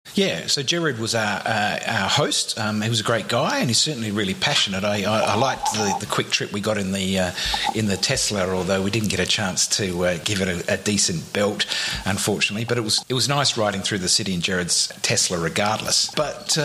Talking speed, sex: 235 wpm, male